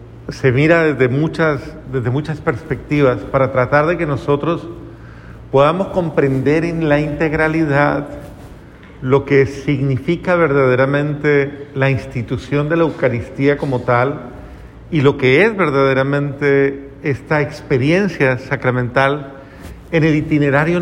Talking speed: 110 wpm